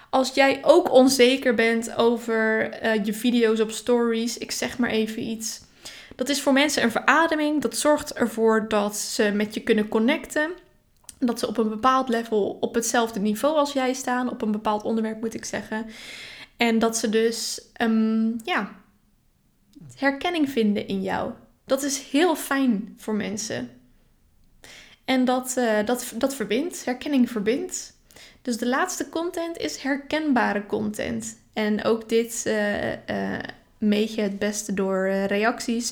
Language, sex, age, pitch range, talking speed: Dutch, female, 10-29, 220-260 Hz, 150 wpm